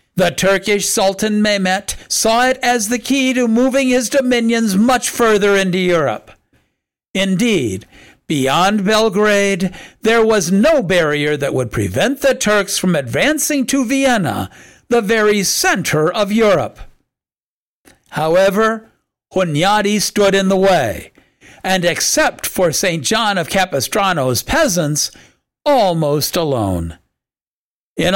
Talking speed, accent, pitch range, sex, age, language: 115 wpm, American, 170-220 Hz, male, 60-79, English